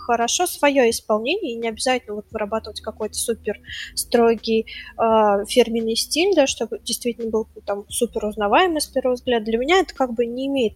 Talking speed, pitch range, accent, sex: 165 wpm, 235-290 Hz, native, female